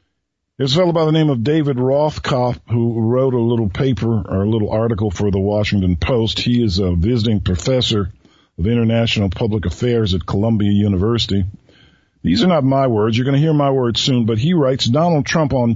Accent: American